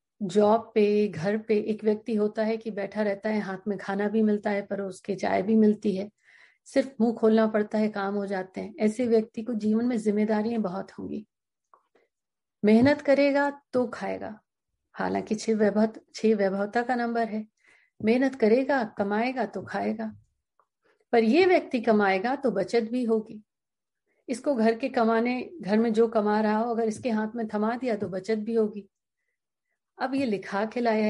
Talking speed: 175 wpm